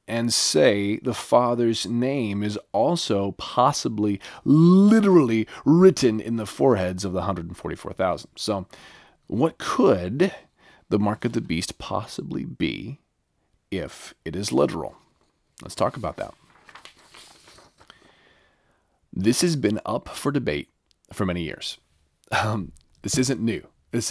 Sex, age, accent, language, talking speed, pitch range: male, 30-49, American, English, 120 wpm, 90-110 Hz